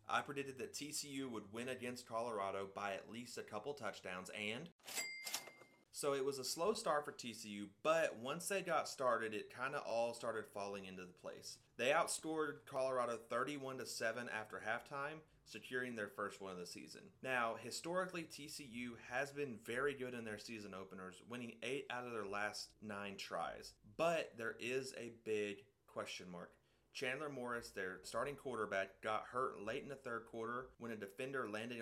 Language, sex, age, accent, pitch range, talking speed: English, male, 30-49, American, 105-135 Hz, 175 wpm